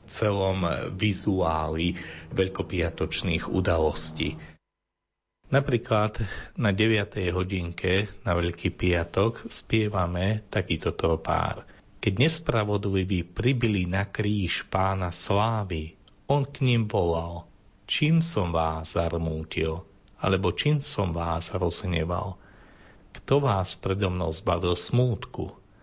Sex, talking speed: male, 95 wpm